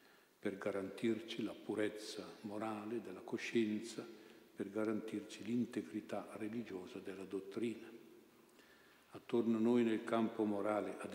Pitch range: 100-115 Hz